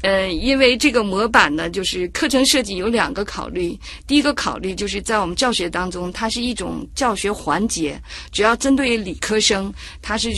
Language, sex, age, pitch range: Chinese, female, 50-69, 190-255 Hz